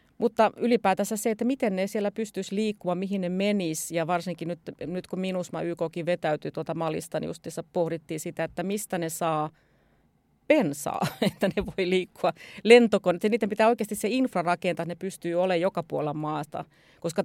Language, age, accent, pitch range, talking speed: Finnish, 30-49, native, 160-200 Hz, 175 wpm